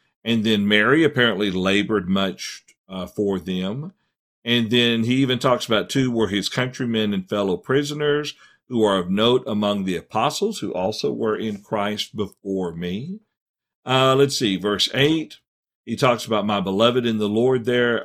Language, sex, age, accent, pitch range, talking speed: English, male, 50-69, American, 105-135 Hz, 165 wpm